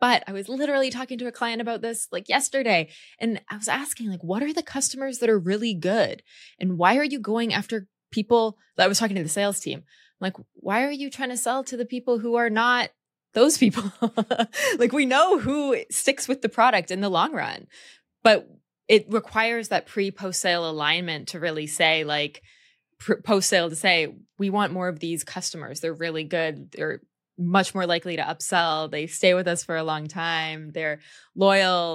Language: English